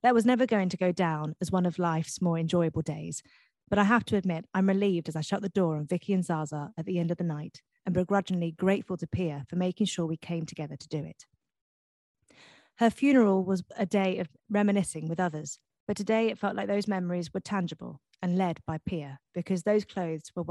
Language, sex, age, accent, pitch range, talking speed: English, female, 30-49, British, 155-195 Hz, 220 wpm